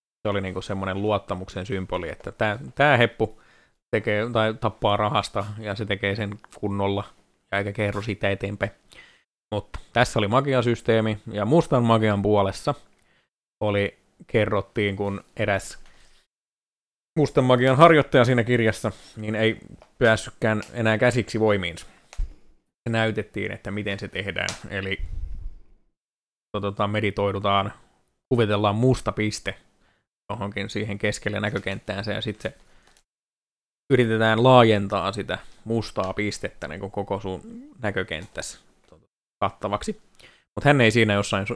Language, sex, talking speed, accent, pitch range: Finnish, male, 115 wpm, native, 100-115 Hz